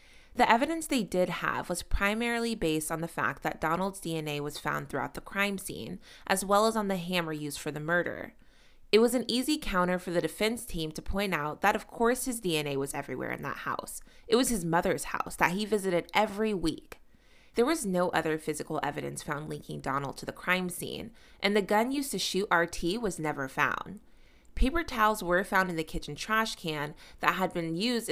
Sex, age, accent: female, 20-39, American